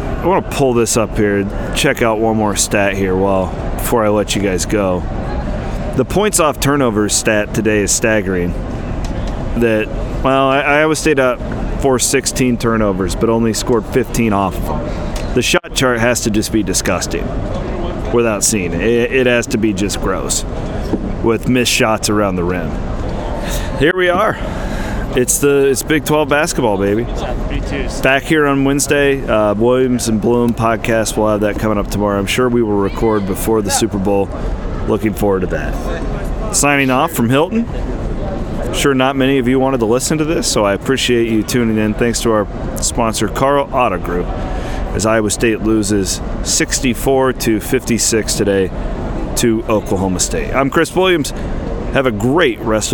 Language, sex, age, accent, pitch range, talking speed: English, male, 40-59, American, 100-125 Hz, 170 wpm